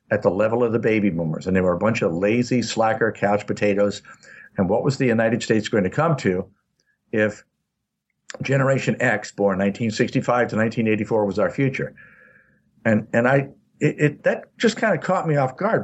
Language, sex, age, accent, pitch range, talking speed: English, male, 60-79, American, 100-135 Hz, 190 wpm